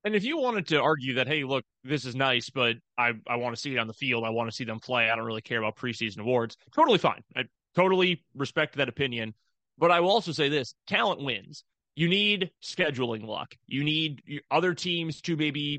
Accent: American